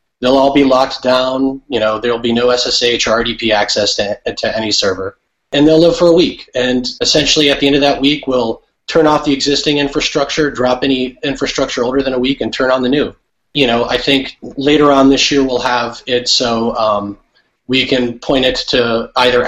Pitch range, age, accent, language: 125-145 Hz, 30-49, American, English